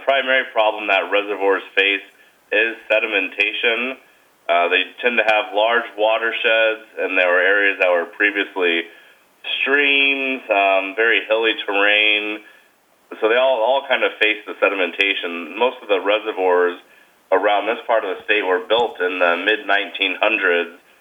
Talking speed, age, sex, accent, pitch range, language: 145 wpm, 30-49, male, American, 95-110 Hz, English